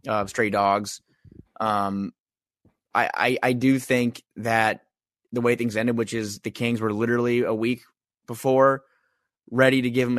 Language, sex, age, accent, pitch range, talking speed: English, male, 20-39, American, 110-130 Hz, 160 wpm